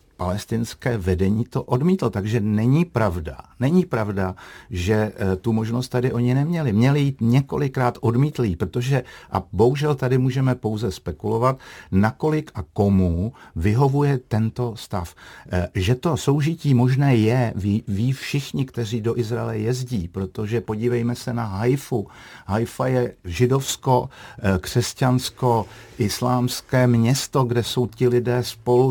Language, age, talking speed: Czech, 50-69, 125 wpm